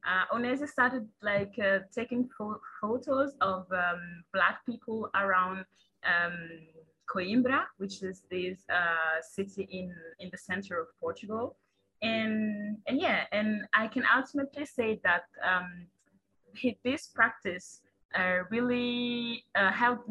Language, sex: Italian, female